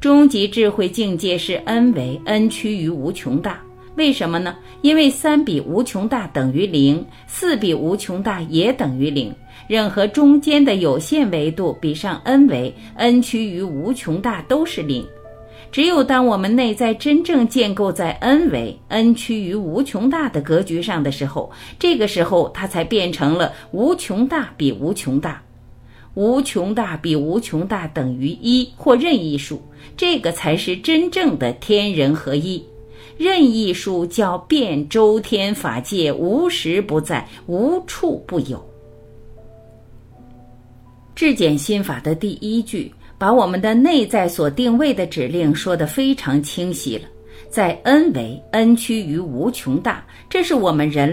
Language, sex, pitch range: Chinese, female, 150-245 Hz